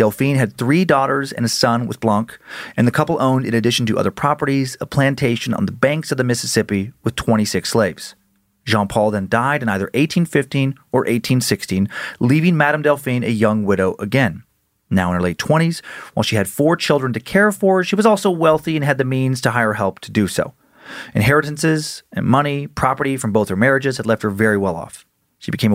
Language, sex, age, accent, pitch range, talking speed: English, male, 30-49, American, 110-140 Hz, 205 wpm